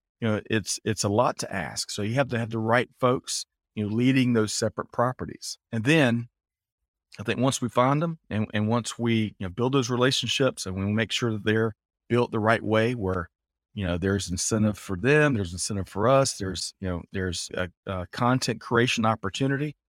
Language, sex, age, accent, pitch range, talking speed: English, male, 40-59, American, 100-125 Hz, 210 wpm